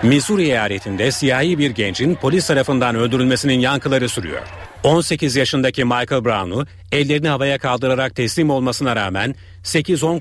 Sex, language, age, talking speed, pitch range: male, Turkish, 40-59, 125 wpm, 120-145 Hz